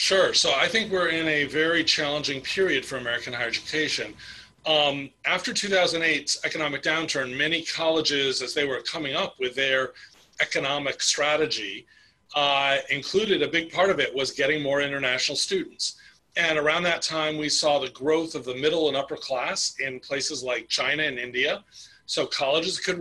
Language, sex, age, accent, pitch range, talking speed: English, male, 40-59, American, 140-175 Hz, 170 wpm